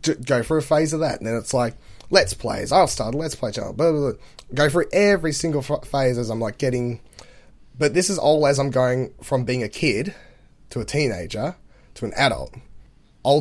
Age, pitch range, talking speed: 10-29, 110-140 Hz, 225 wpm